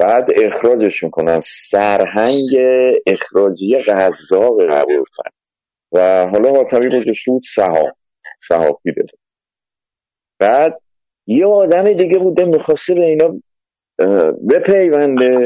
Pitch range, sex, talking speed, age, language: 120-190 Hz, male, 95 wpm, 50-69, Persian